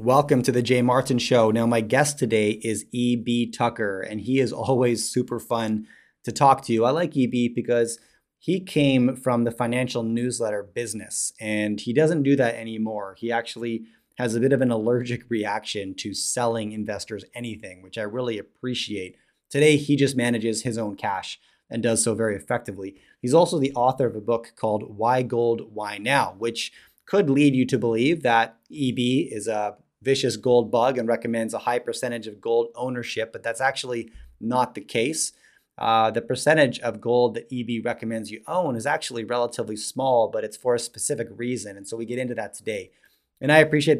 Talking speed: 190 wpm